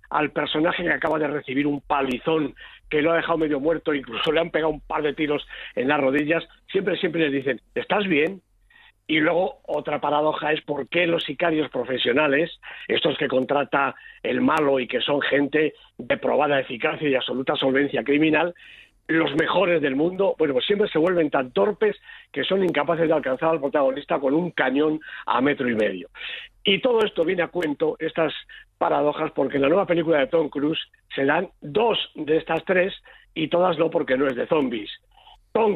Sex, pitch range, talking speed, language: male, 145-170 Hz, 190 wpm, Spanish